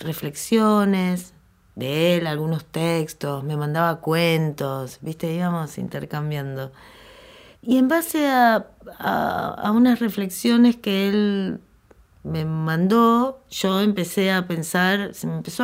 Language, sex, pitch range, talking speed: Spanish, female, 155-215 Hz, 115 wpm